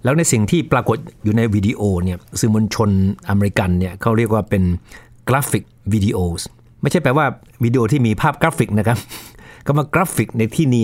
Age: 60-79